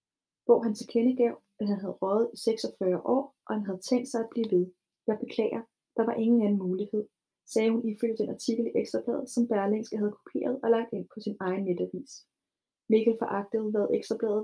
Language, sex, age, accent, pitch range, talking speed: Danish, female, 30-49, native, 205-235 Hz, 195 wpm